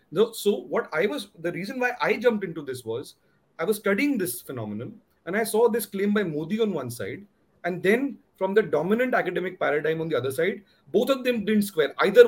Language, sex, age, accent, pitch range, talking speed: English, male, 40-59, Indian, 165-230 Hz, 215 wpm